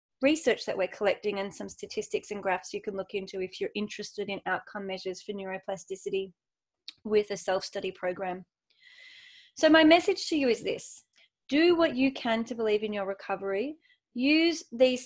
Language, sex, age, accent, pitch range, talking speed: English, female, 30-49, Australian, 200-255 Hz, 170 wpm